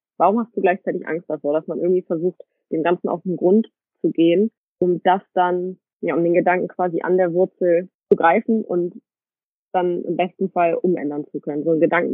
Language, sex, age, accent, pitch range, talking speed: German, female, 20-39, German, 165-200 Hz, 205 wpm